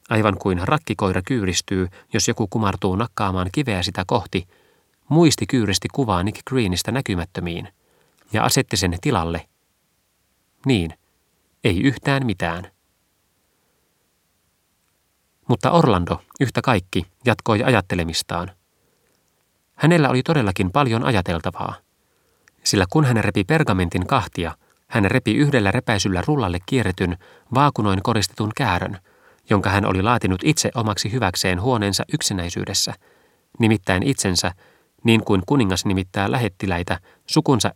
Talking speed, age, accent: 110 wpm, 30-49, native